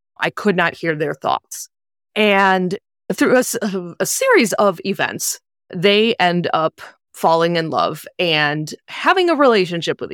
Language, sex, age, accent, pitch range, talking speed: English, female, 20-39, American, 165-205 Hz, 140 wpm